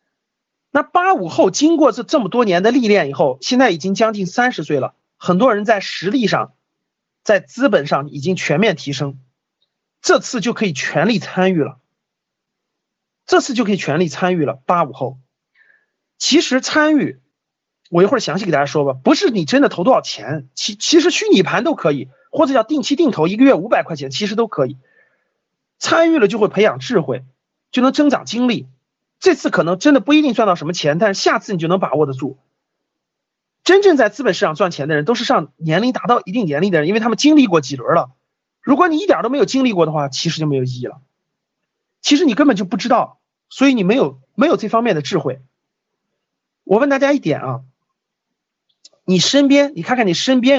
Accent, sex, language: native, male, Chinese